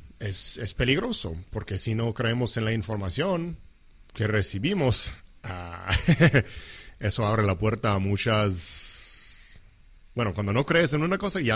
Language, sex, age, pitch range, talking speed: English, male, 40-59, 95-115 Hz, 140 wpm